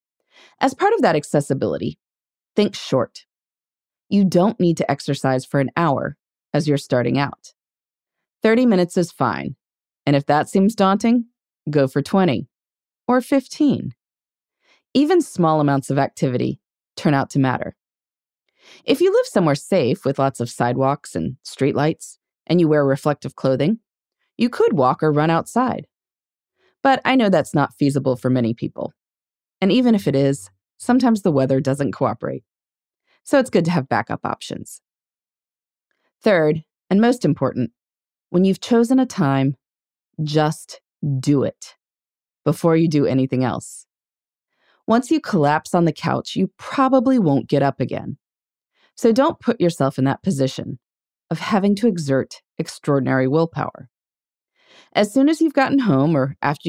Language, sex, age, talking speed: English, female, 20-39, 150 wpm